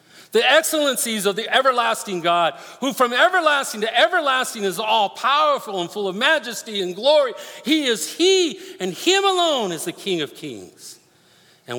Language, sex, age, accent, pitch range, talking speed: English, male, 50-69, American, 165-260 Hz, 165 wpm